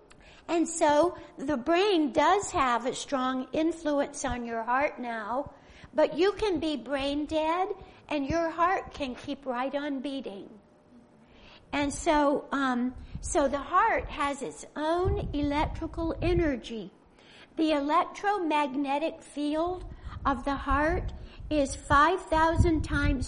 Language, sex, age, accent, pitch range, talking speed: English, female, 60-79, American, 270-320 Hz, 120 wpm